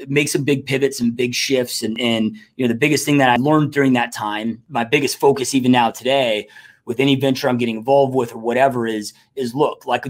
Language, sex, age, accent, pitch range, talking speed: English, male, 30-49, American, 120-150 Hz, 230 wpm